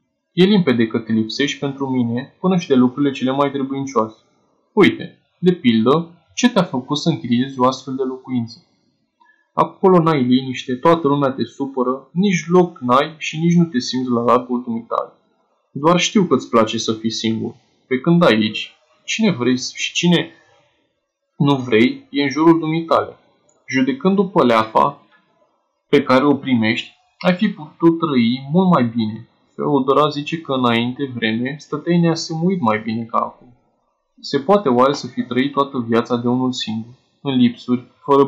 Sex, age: male, 20-39